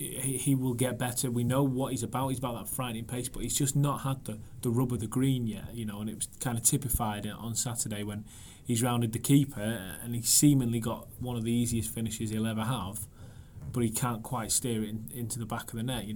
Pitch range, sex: 110-125 Hz, male